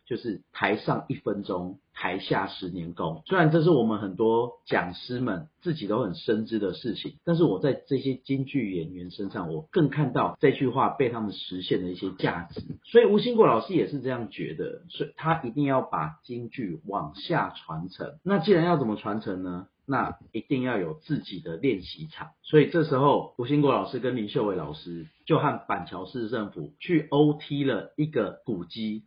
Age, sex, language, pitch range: 40-59, male, Chinese, 105-155 Hz